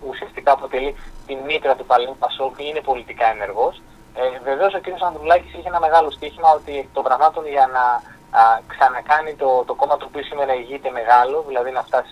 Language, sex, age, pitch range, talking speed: Greek, male, 20-39, 125-180 Hz, 185 wpm